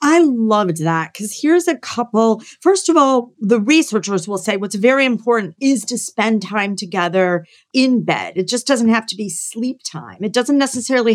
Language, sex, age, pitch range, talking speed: English, female, 40-59, 195-250 Hz, 190 wpm